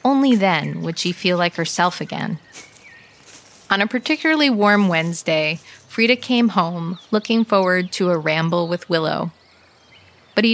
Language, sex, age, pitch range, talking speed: English, female, 30-49, 165-225 Hz, 140 wpm